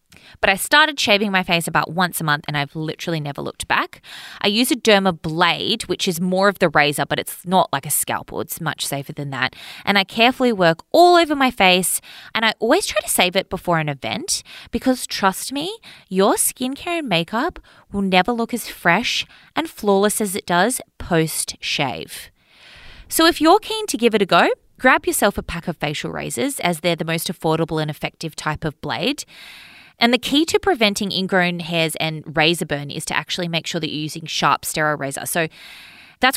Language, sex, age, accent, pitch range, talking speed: English, female, 20-39, Australian, 165-255 Hz, 205 wpm